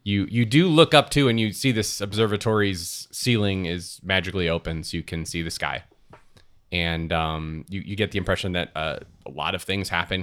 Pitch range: 85-105 Hz